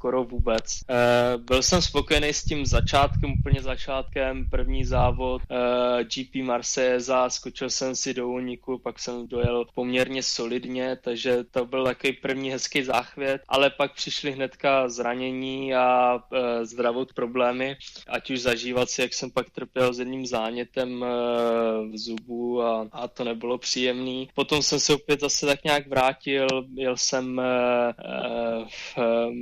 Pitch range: 120-135 Hz